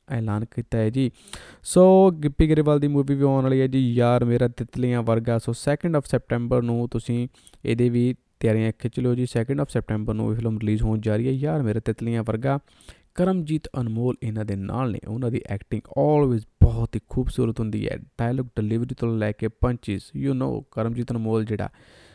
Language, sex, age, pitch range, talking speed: Punjabi, male, 20-39, 110-135 Hz, 175 wpm